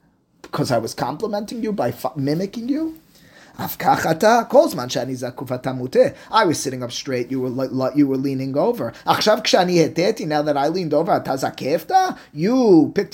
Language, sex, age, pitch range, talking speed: English, male, 20-39, 130-195 Hz, 130 wpm